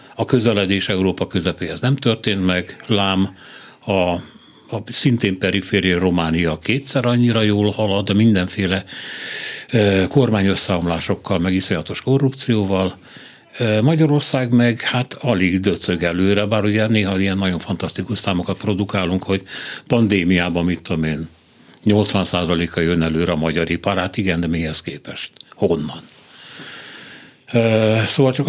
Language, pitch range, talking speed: Hungarian, 90-115 Hz, 120 wpm